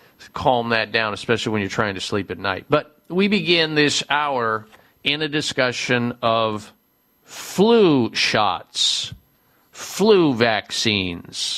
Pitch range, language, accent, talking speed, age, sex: 115-145 Hz, English, American, 125 wpm, 50-69, male